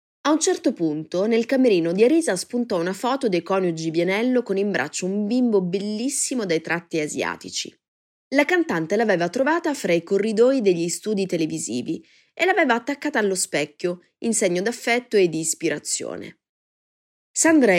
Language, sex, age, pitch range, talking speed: Italian, female, 20-39, 165-230 Hz, 150 wpm